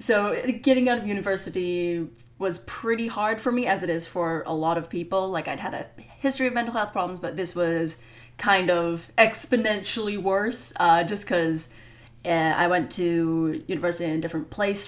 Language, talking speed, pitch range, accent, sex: English, 180 wpm, 165-215 Hz, American, female